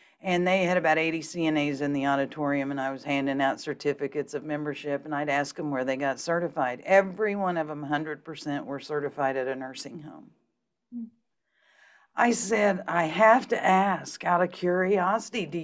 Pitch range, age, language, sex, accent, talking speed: 160-195 Hz, 50-69, English, female, American, 175 wpm